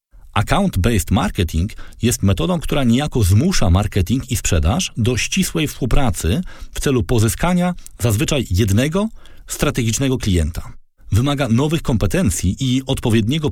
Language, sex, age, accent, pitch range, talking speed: Polish, male, 40-59, native, 95-130 Hz, 110 wpm